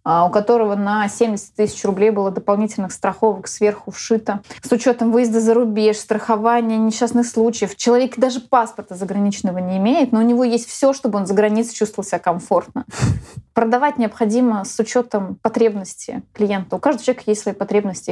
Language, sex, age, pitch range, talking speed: Russian, female, 20-39, 200-230 Hz, 160 wpm